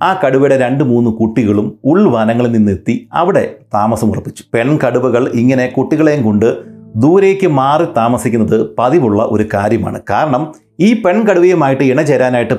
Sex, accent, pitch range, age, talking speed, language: male, native, 115-145 Hz, 30-49, 115 wpm, Malayalam